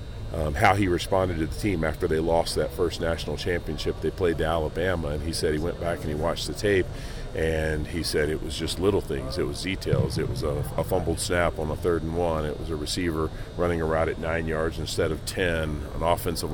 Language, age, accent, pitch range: English, 40-59, American, 80-95 Hz